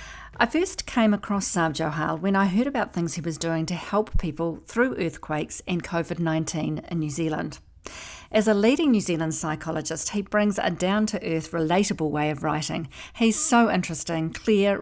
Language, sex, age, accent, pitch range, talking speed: English, female, 50-69, Australian, 165-220 Hz, 170 wpm